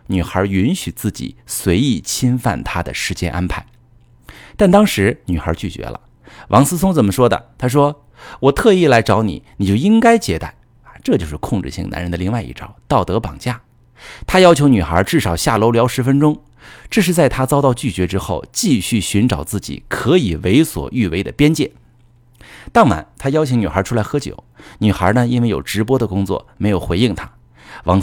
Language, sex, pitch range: Chinese, male, 95-130 Hz